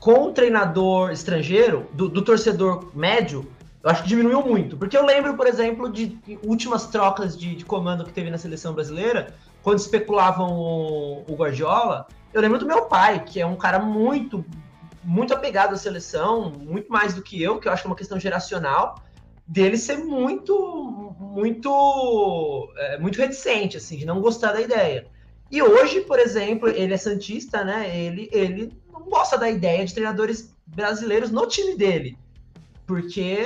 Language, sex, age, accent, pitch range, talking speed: Portuguese, male, 20-39, Brazilian, 185-235 Hz, 170 wpm